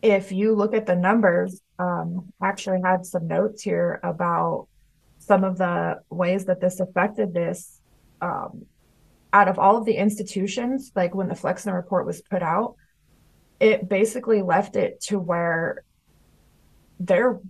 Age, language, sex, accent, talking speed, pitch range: 20-39, English, female, American, 150 wpm, 180-205 Hz